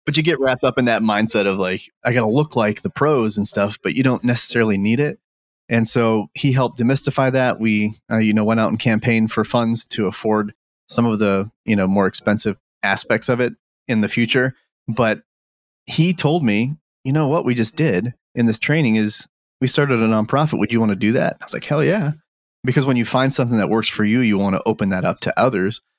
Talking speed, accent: 235 wpm, American